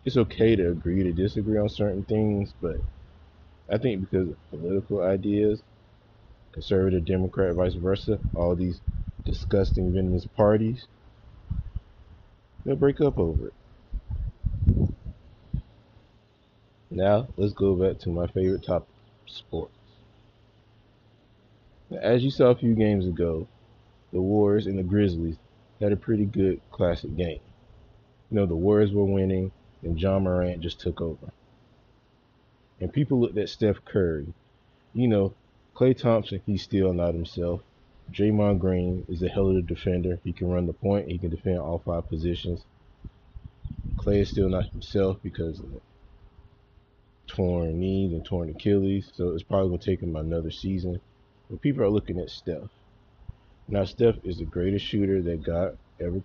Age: 20-39